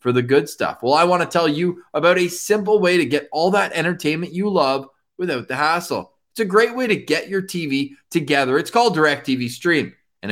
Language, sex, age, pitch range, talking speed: English, male, 20-39, 125-175 Hz, 225 wpm